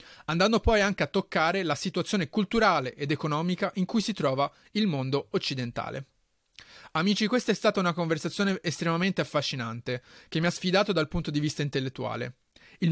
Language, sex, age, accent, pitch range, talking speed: Italian, male, 30-49, native, 140-195 Hz, 165 wpm